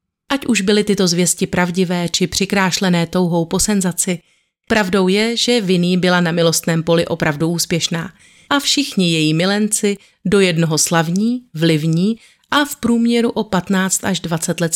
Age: 40-59